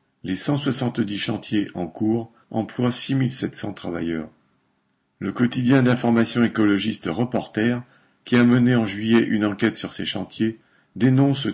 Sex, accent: male, French